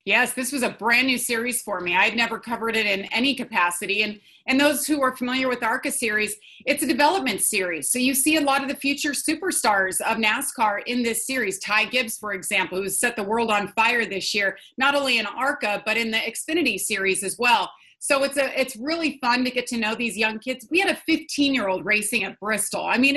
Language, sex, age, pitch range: English, female, 30-49, 210-265 Hz